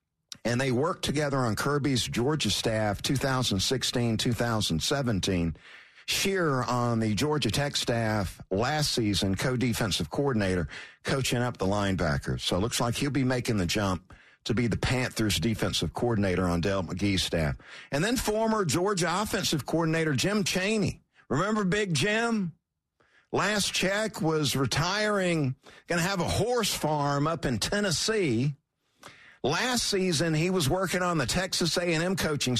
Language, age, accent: English, 50-69, American